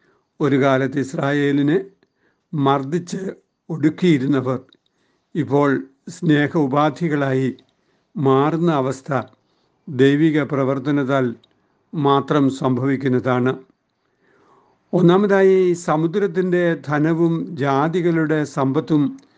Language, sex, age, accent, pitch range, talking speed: Malayalam, male, 60-79, native, 135-170 Hz, 60 wpm